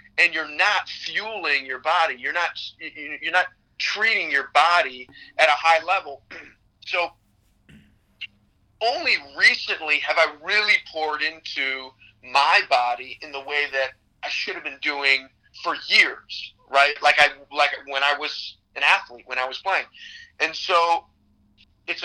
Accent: American